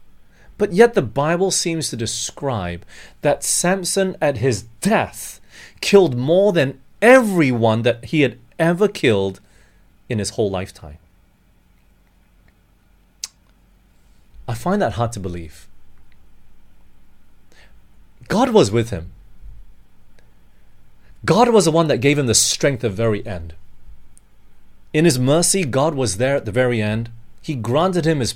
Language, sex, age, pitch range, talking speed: English, male, 30-49, 95-155 Hz, 130 wpm